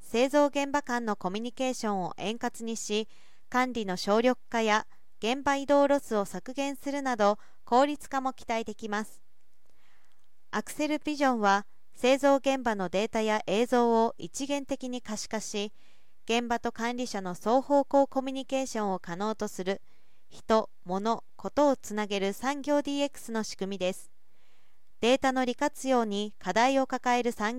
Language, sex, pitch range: Japanese, female, 205-270 Hz